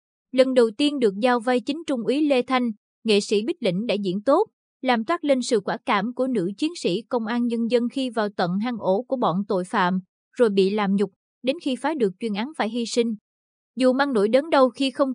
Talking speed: 240 wpm